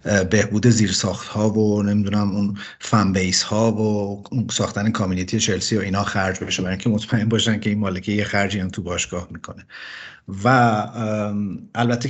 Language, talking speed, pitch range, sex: Persian, 160 wpm, 105-125 Hz, male